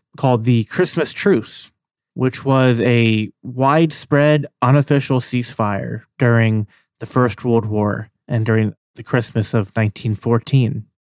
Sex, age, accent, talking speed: male, 30-49, American, 115 wpm